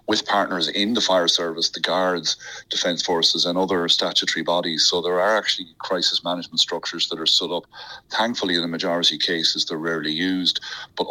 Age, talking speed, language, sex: 30-49, 190 wpm, English, male